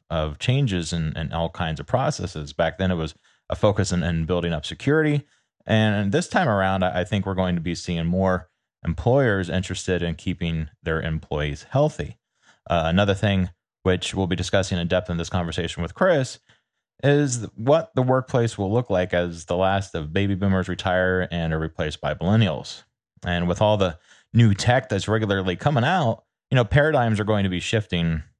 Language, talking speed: English, 190 wpm